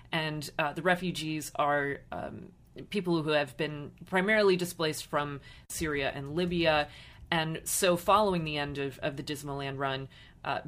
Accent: American